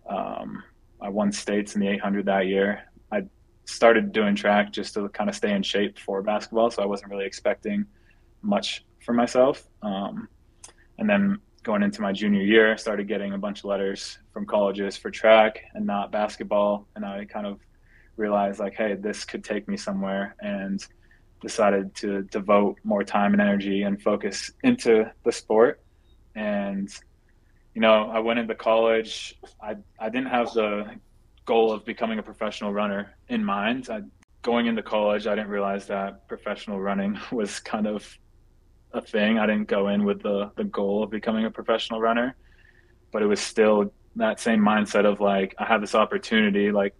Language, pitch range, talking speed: English, 100-110 Hz, 175 wpm